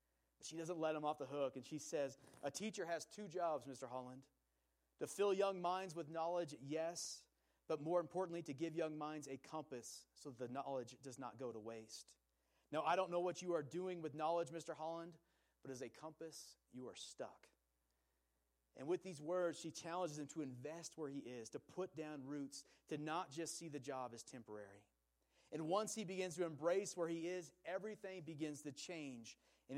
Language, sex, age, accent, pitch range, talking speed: English, male, 30-49, American, 130-175 Hz, 200 wpm